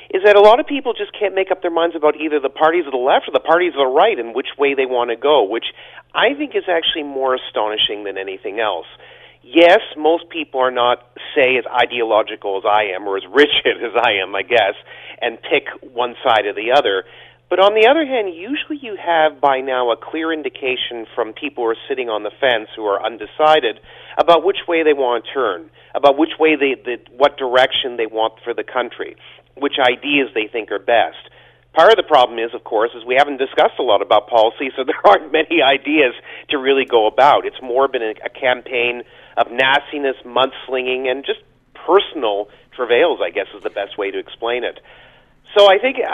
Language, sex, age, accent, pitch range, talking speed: English, male, 40-59, American, 130-190 Hz, 215 wpm